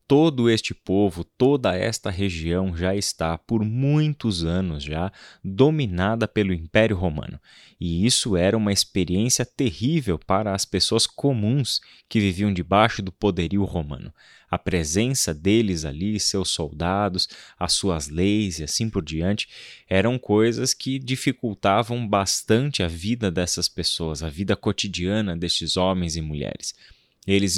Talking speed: 135 wpm